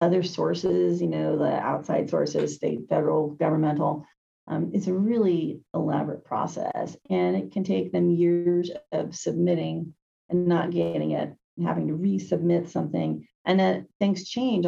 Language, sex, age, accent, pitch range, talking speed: English, female, 40-59, American, 150-200 Hz, 145 wpm